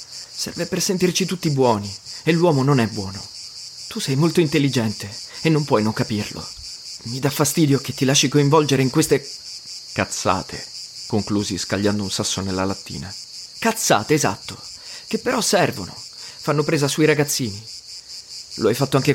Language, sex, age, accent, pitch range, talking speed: Italian, male, 30-49, native, 100-135 Hz, 150 wpm